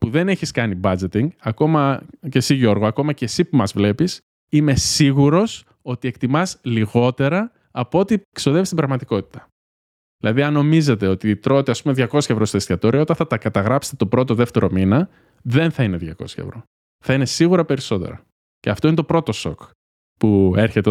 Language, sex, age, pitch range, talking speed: Greek, male, 20-39, 110-165 Hz, 175 wpm